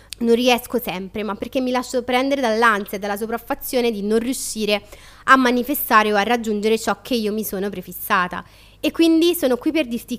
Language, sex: Italian, female